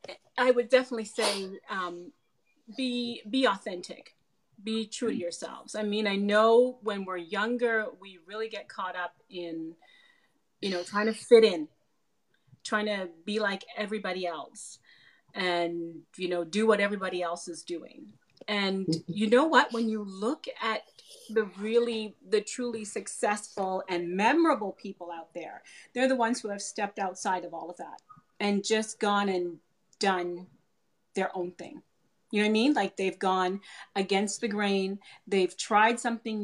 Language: English